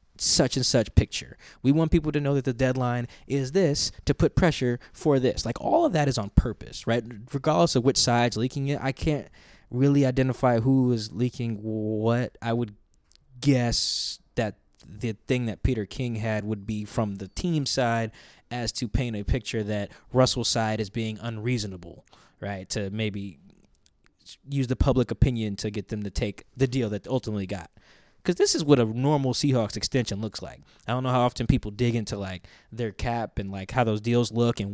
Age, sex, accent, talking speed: 20-39, male, American, 195 wpm